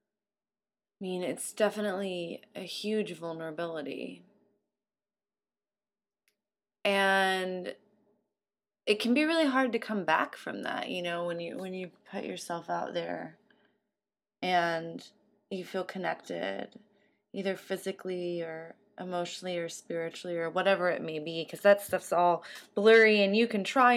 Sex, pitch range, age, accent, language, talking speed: female, 170-205 Hz, 20-39, American, English, 130 wpm